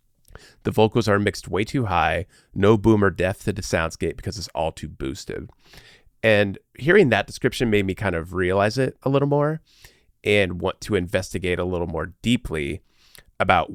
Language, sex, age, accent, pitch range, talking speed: English, male, 30-49, American, 90-110 Hz, 180 wpm